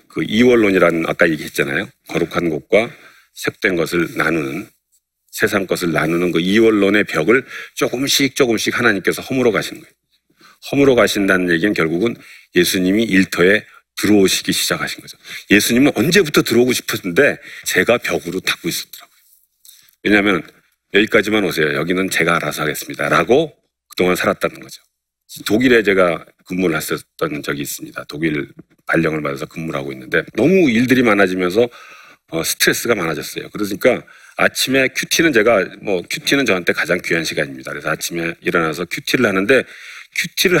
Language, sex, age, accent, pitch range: Korean, male, 40-59, native, 90-125 Hz